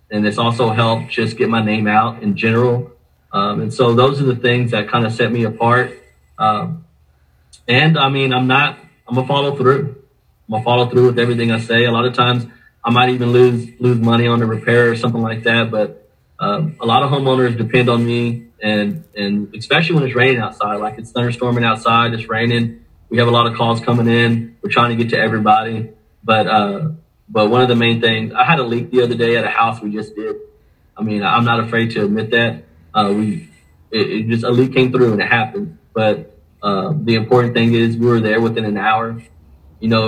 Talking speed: 225 wpm